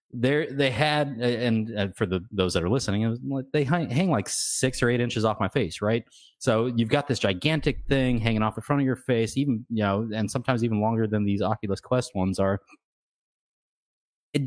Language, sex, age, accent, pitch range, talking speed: English, male, 30-49, American, 100-120 Hz, 205 wpm